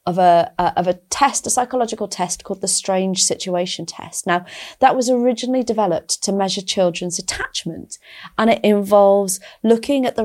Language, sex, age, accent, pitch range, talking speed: English, female, 30-49, British, 180-240 Hz, 170 wpm